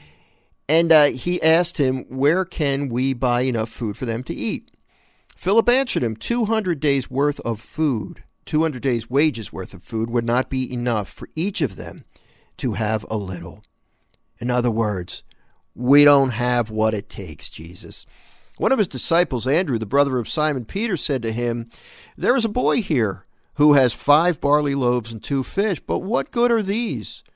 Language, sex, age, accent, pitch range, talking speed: English, male, 50-69, American, 115-155 Hz, 180 wpm